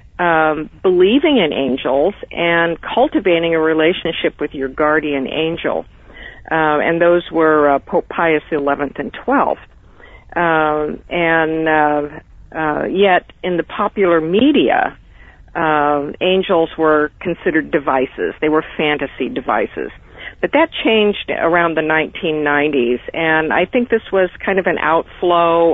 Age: 50-69